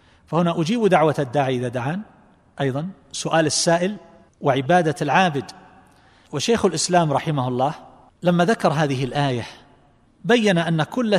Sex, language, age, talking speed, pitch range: male, Arabic, 40-59, 120 wpm, 140-185 Hz